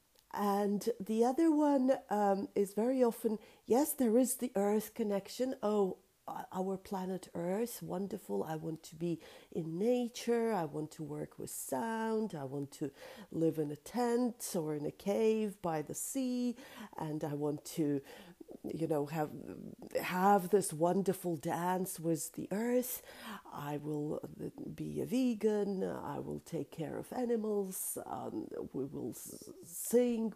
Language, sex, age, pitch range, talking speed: English, female, 40-59, 165-240 Hz, 145 wpm